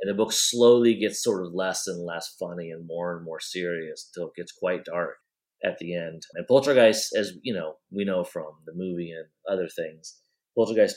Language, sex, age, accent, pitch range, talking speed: English, male, 30-49, American, 85-110 Hz, 210 wpm